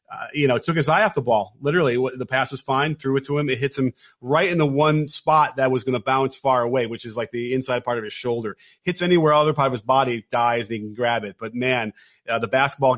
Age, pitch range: 30-49, 125-155 Hz